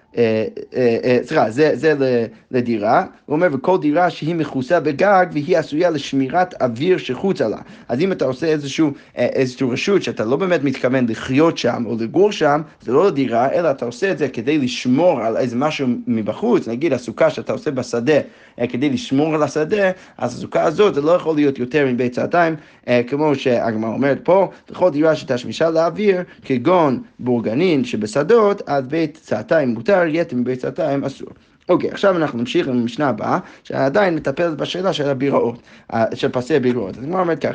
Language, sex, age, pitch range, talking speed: Hebrew, male, 30-49, 125-175 Hz, 175 wpm